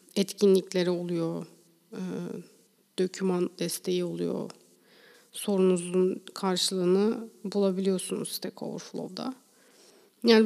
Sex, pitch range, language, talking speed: female, 180-215 Hz, Turkish, 65 wpm